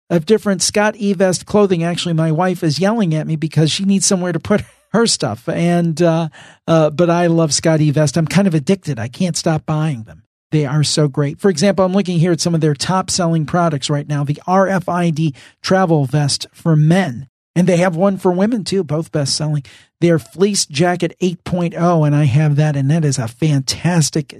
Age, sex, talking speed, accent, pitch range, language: 50-69, male, 205 wpm, American, 150-195 Hz, English